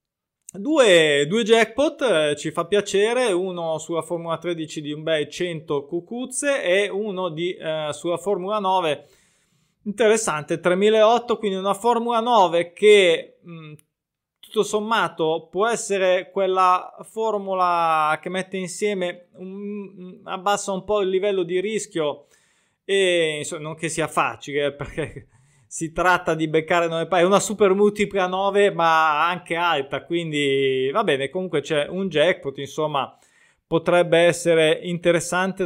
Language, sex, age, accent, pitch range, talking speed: Italian, male, 20-39, native, 160-195 Hz, 130 wpm